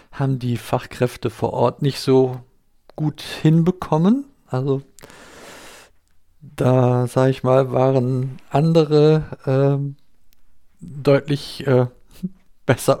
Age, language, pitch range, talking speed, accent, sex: 50-69, German, 115-145 Hz, 90 wpm, German, male